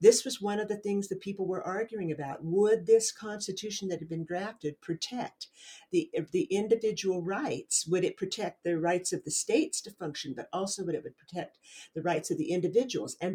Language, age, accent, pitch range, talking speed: English, 50-69, American, 160-200 Hz, 200 wpm